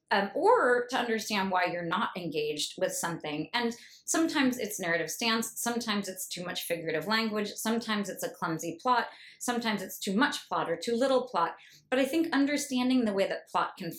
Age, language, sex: 30-49, English, female